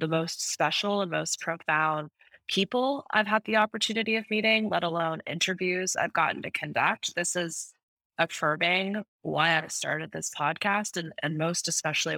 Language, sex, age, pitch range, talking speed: English, female, 20-39, 150-170 Hz, 160 wpm